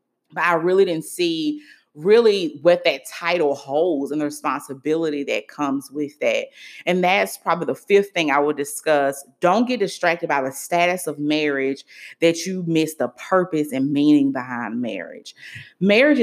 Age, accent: 30-49, American